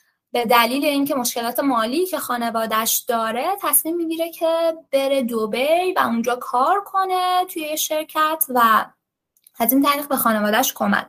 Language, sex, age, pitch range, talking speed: Persian, female, 20-39, 230-300 Hz, 135 wpm